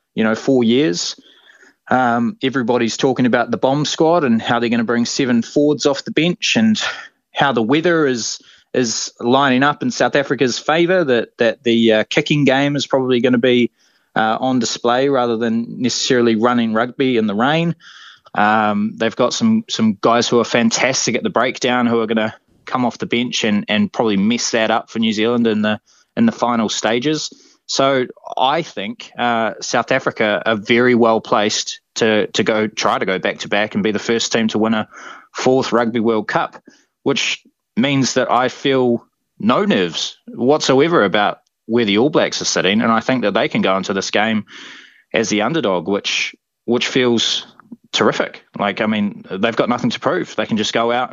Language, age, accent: English, 20-39, Australian